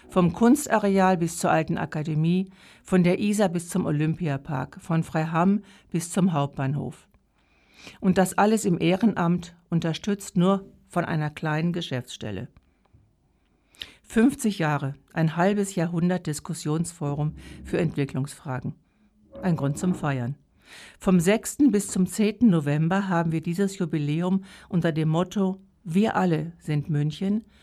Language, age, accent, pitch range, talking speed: German, 60-79, German, 155-190 Hz, 125 wpm